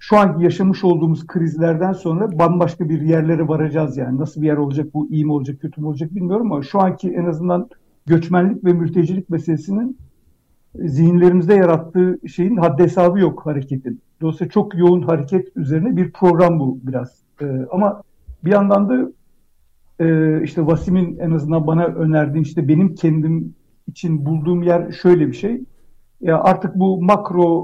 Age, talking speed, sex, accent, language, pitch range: 60-79, 155 wpm, male, native, Turkish, 160-185 Hz